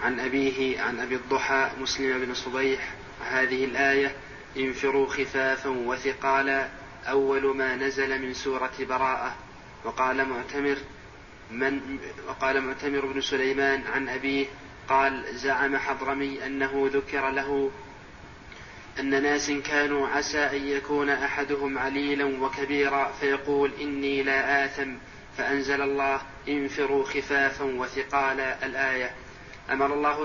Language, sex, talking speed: Arabic, male, 105 wpm